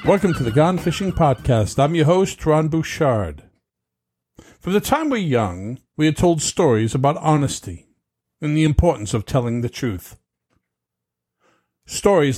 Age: 50-69